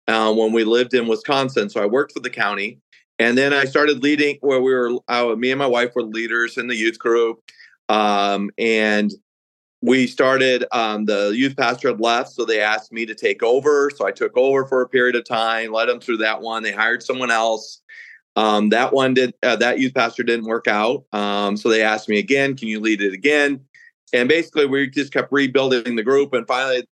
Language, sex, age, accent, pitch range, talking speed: English, male, 40-59, American, 110-135 Hz, 215 wpm